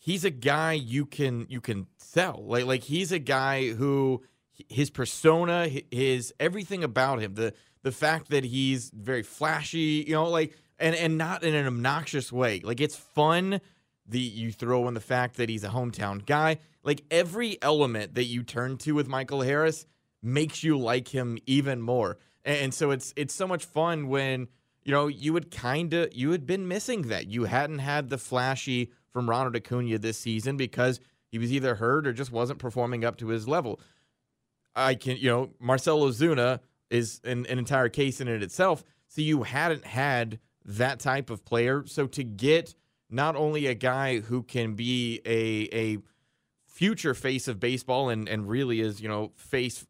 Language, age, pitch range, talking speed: English, 30-49, 120-145 Hz, 185 wpm